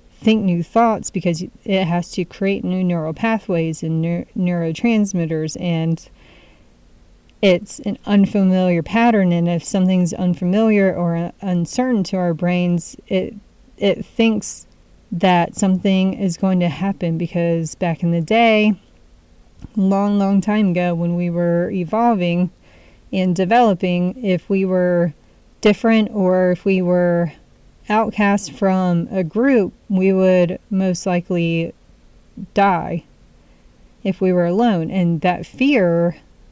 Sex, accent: female, American